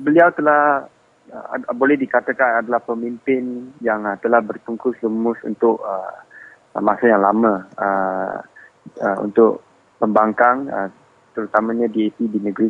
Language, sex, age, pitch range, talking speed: English, male, 20-39, 105-120 Hz, 130 wpm